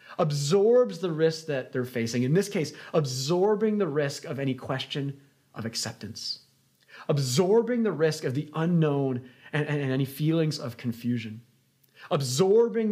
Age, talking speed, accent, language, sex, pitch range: 30-49, 145 wpm, American, English, male, 120-160 Hz